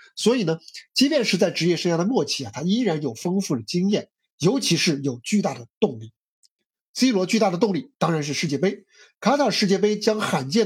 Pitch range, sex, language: 145-200 Hz, male, Chinese